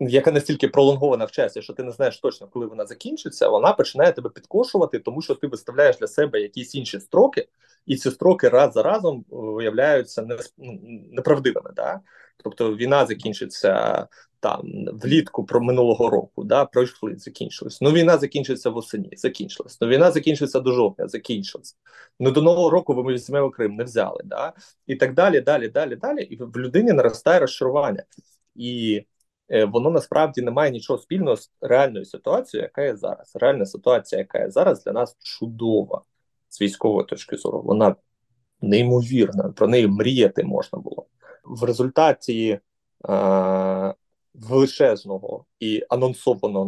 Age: 20-39